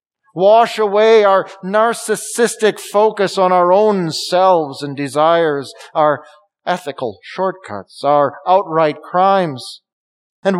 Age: 50-69